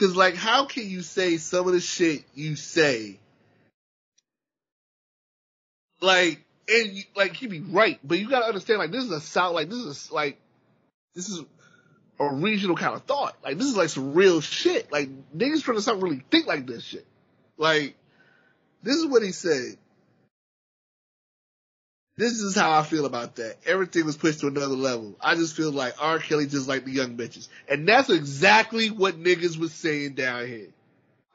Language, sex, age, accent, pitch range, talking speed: English, male, 20-39, American, 155-240 Hz, 180 wpm